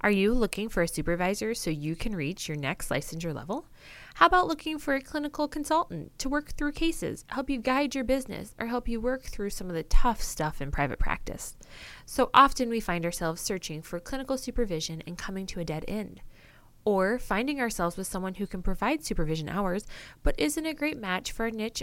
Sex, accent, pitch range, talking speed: female, American, 175-245 Hz, 210 wpm